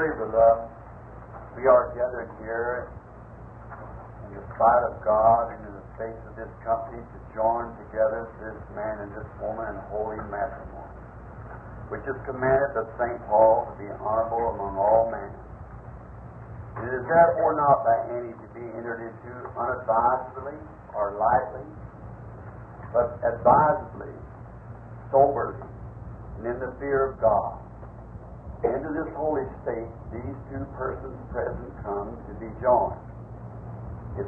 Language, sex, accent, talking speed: English, male, American, 130 wpm